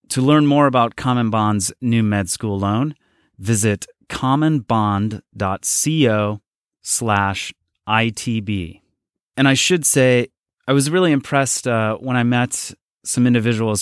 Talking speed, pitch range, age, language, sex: 115 wpm, 105-130 Hz, 30-49, English, male